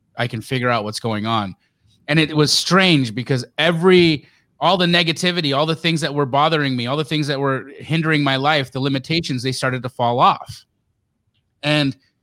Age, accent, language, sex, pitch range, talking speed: 30-49, American, English, male, 125-160 Hz, 190 wpm